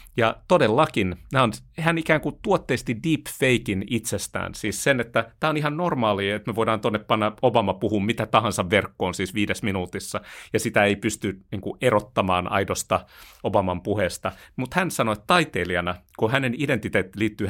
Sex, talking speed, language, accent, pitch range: male, 160 wpm, Finnish, native, 90-120 Hz